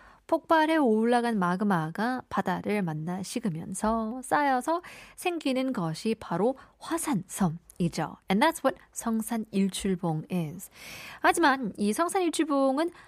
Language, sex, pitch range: Korean, female, 180-265 Hz